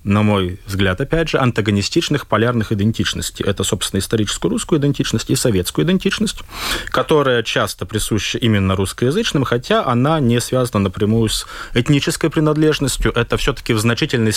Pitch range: 105-145 Hz